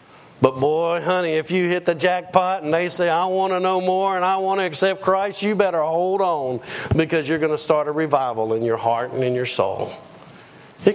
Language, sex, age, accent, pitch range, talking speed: English, male, 50-69, American, 120-175 Hz, 225 wpm